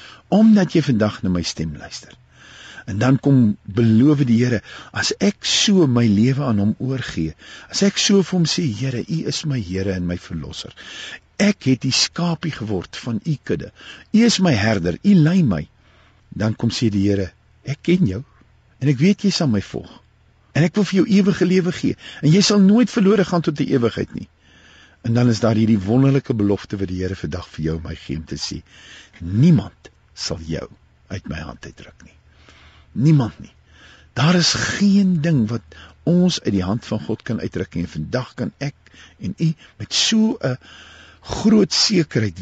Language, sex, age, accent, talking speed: English, male, 50-69, Dutch, 190 wpm